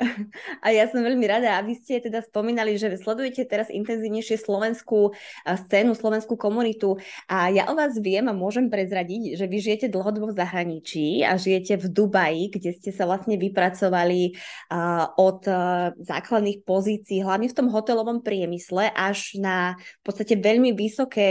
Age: 20-39